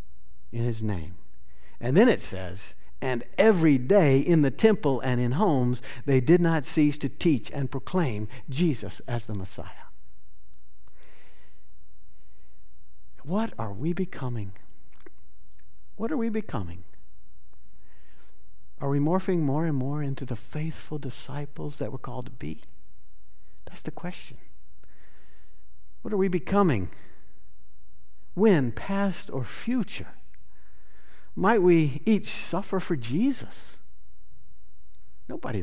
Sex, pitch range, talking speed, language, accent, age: male, 90-145 Hz, 115 wpm, English, American, 60-79